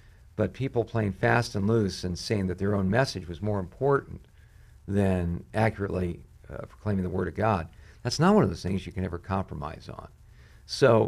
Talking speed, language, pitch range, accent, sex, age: 185 wpm, English, 95-115 Hz, American, male, 50-69